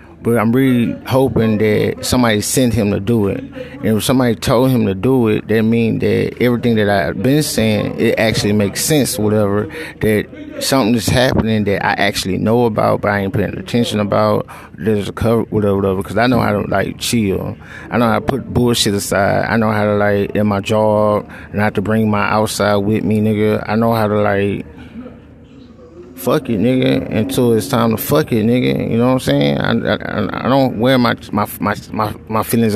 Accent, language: American, English